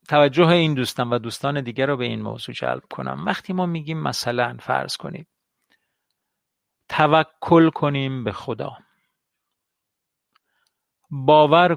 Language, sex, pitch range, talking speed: Persian, male, 125-165 Hz, 115 wpm